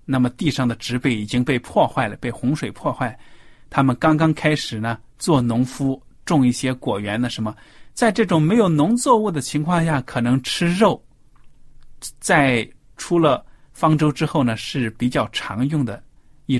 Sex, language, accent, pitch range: male, Chinese, native, 120-150 Hz